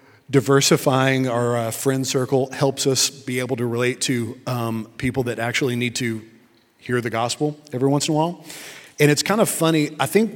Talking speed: 190 wpm